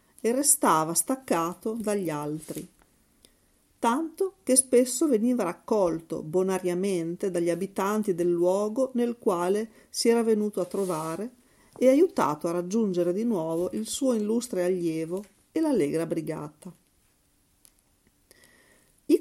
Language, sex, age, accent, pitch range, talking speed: Italian, female, 40-59, native, 165-230 Hz, 110 wpm